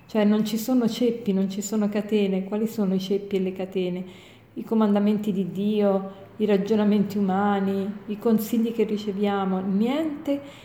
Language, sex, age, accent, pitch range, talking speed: Italian, female, 40-59, native, 200-230 Hz, 160 wpm